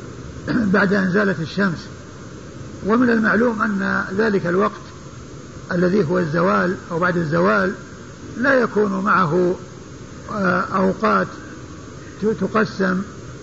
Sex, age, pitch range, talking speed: male, 50-69, 190-220 Hz, 90 wpm